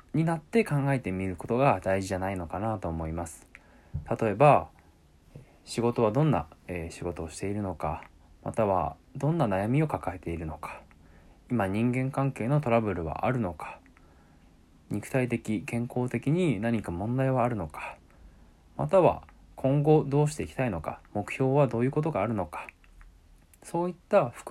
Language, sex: Japanese, male